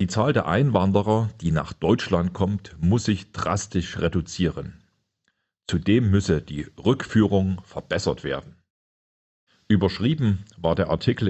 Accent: German